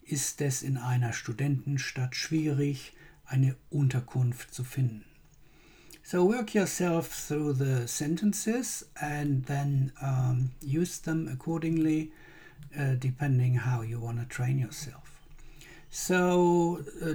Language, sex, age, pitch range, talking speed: English, male, 60-79, 135-165 Hz, 110 wpm